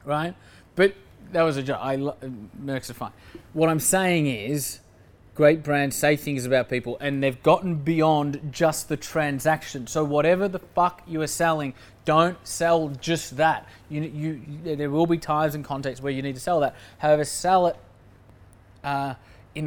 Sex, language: male, English